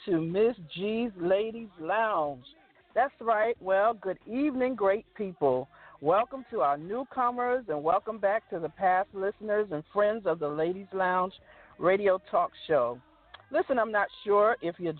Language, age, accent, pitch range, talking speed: English, 50-69, American, 170-230 Hz, 150 wpm